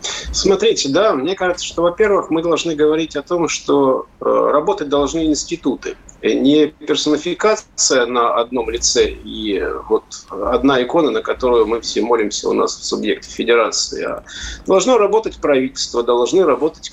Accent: native